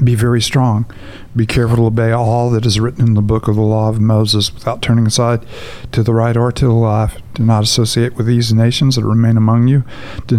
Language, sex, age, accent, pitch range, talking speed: English, male, 50-69, American, 110-120 Hz, 230 wpm